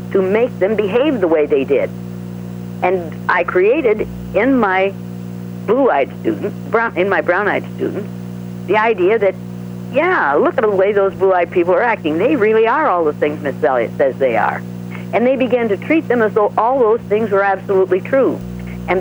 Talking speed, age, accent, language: 185 wpm, 60-79, American, English